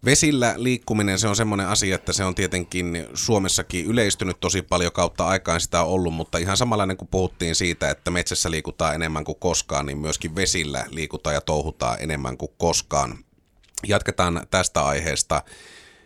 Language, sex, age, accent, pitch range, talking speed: Finnish, male, 30-49, native, 80-100 Hz, 155 wpm